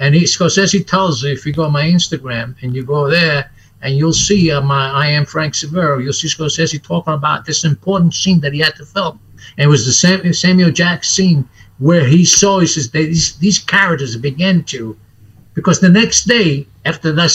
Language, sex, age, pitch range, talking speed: English, male, 60-79, 140-185 Hz, 210 wpm